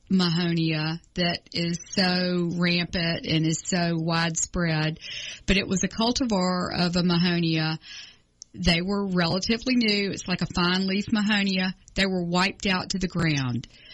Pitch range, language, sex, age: 175-200 Hz, English, female, 40-59